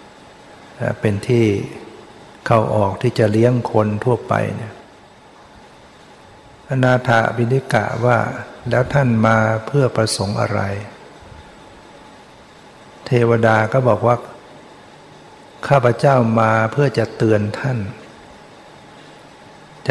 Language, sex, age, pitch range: Thai, male, 60-79, 110-125 Hz